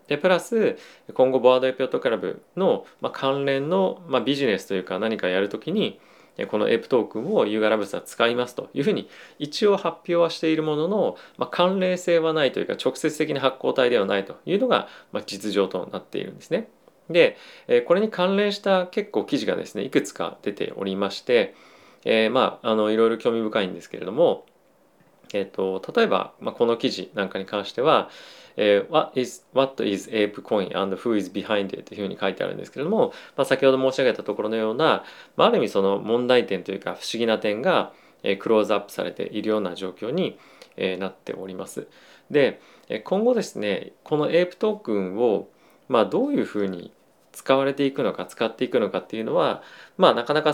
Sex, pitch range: male, 110-170 Hz